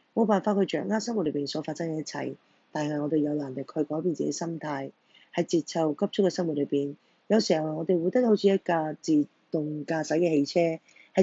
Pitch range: 150-190 Hz